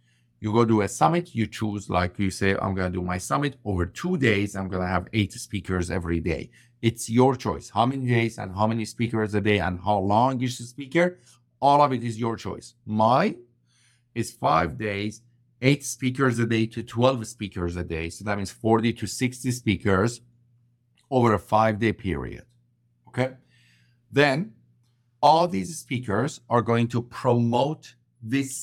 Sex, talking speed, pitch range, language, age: male, 180 wpm, 100-125 Hz, English, 50-69